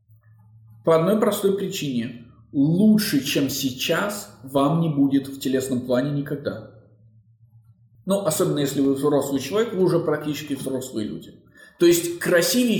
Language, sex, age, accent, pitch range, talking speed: Russian, male, 20-39, native, 125-175 Hz, 130 wpm